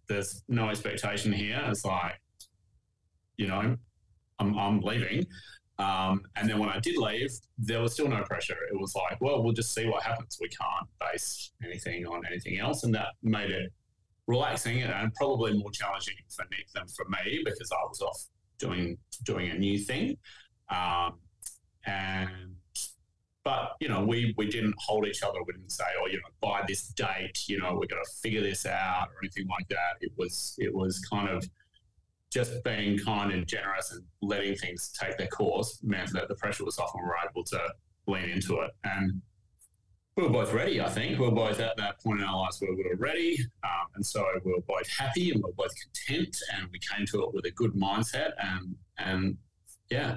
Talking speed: 200 wpm